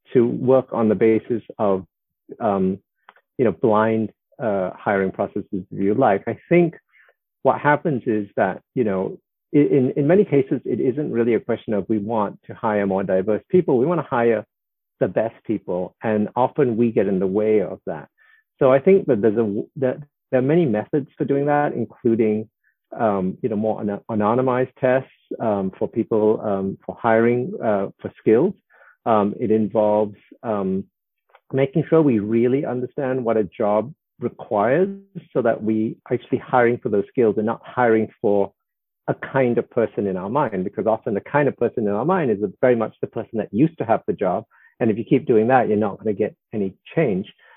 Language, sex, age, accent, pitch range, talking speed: English, male, 50-69, American, 105-135 Hz, 195 wpm